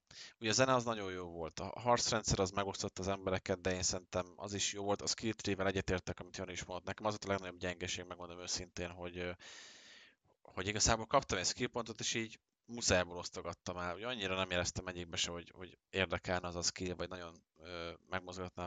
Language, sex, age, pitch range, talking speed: Hungarian, male, 20-39, 90-100 Hz, 195 wpm